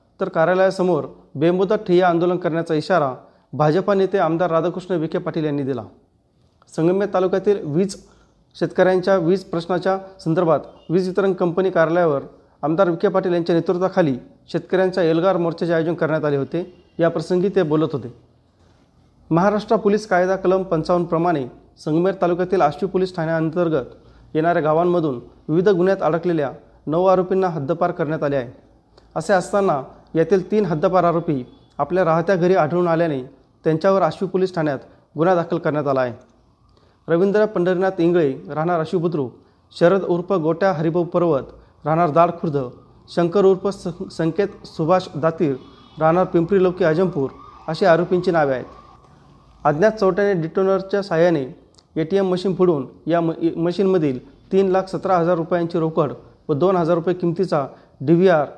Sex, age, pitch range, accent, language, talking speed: male, 40-59, 160-185 Hz, native, Marathi, 130 wpm